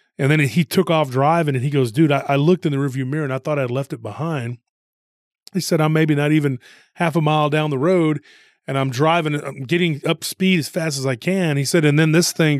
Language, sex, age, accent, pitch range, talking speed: English, male, 30-49, American, 135-160 Hz, 255 wpm